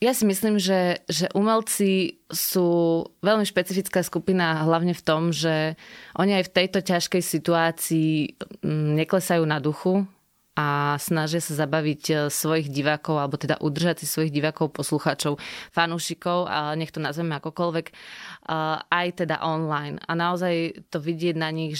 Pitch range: 155-180 Hz